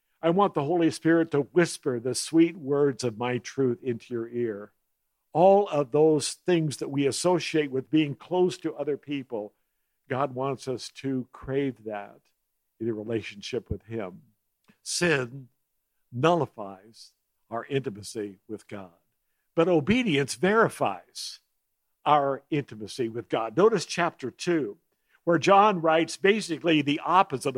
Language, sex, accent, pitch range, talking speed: English, male, American, 130-180 Hz, 135 wpm